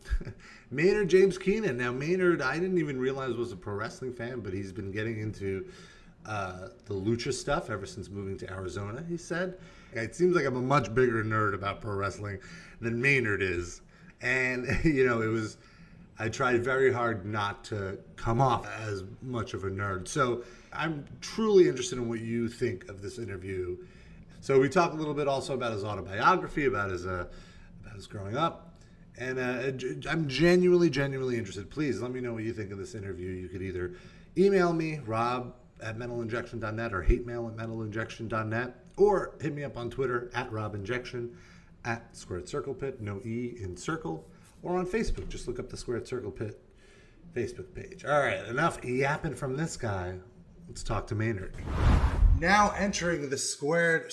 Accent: American